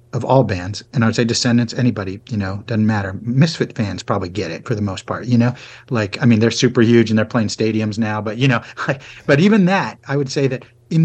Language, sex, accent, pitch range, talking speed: English, male, American, 110-130 Hz, 250 wpm